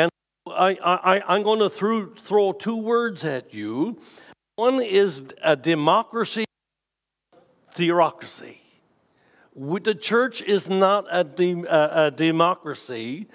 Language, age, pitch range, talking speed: English, 60-79, 155-205 Hz, 115 wpm